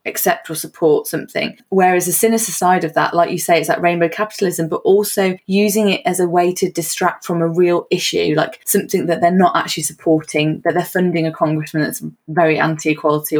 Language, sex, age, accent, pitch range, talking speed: English, female, 20-39, British, 165-190 Hz, 200 wpm